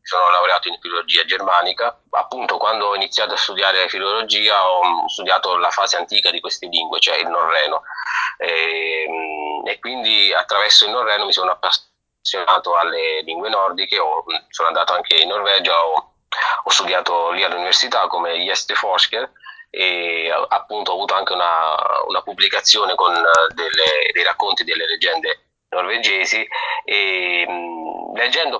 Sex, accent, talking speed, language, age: male, native, 140 wpm, Italian, 30-49